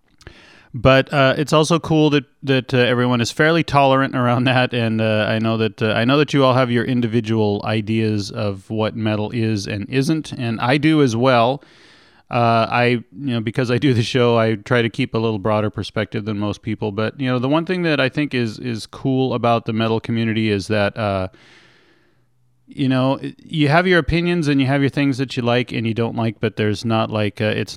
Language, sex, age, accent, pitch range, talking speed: English, male, 30-49, American, 105-130 Hz, 225 wpm